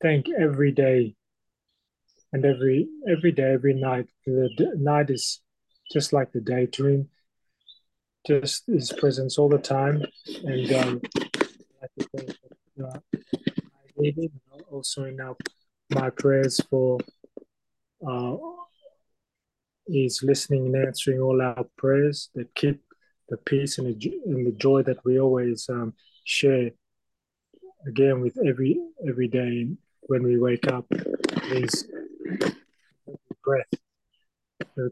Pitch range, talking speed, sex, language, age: 125-145 Hz, 115 wpm, male, English, 30-49